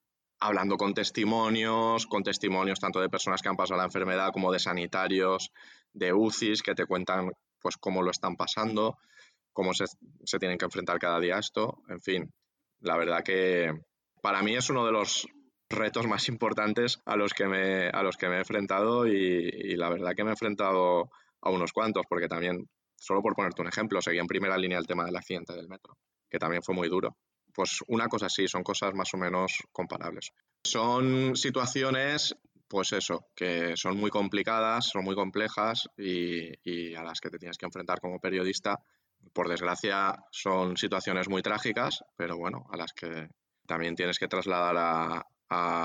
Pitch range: 90-100 Hz